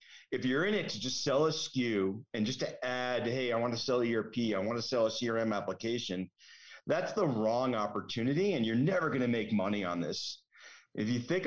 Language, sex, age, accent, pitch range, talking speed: English, male, 40-59, American, 110-140 Hz, 220 wpm